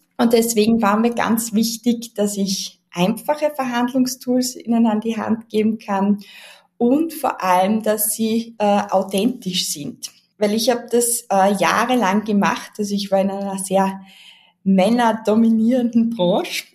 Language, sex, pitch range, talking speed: German, female, 195-240 Hz, 145 wpm